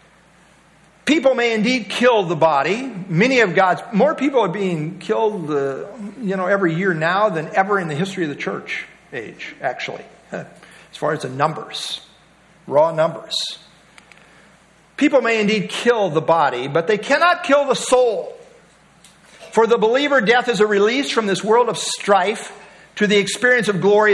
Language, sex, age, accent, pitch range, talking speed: English, male, 50-69, American, 180-230 Hz, 165 wpm